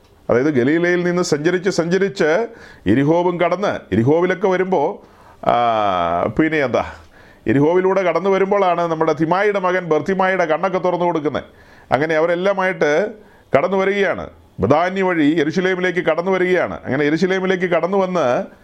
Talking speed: 100 wpm